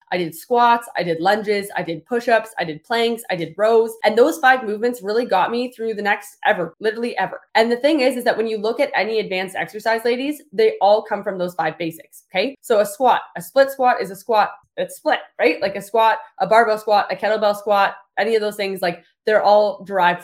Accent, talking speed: American, 235 wpm